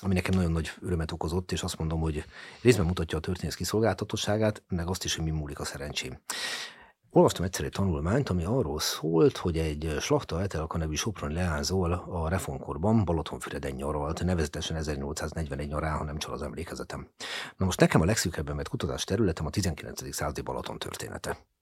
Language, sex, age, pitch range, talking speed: Hungarian, male, 40-59, 75-95 Hz, 170 wpm